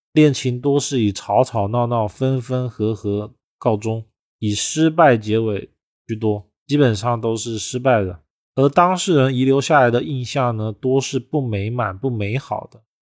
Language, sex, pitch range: Chinese, male, 110-135 Hz